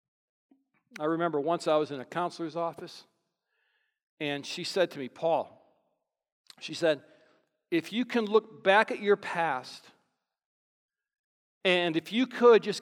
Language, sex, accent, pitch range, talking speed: English, male, American, 175-245 Hz, 140 wpm